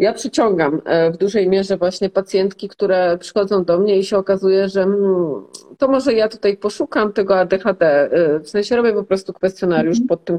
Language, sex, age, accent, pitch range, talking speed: Polish, female, 40-59, native, 180-210 Hz, 175 wpm